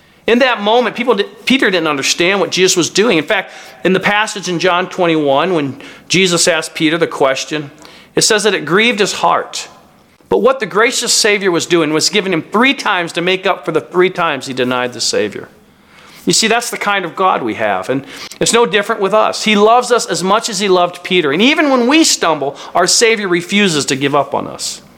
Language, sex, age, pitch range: English, male, 40-59, 135-200 Hz